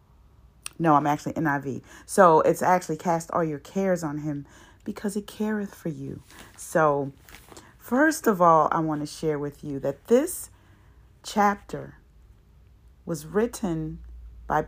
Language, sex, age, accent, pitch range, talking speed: English, female, 40-59, American, 150-195 Hz, 140 wpm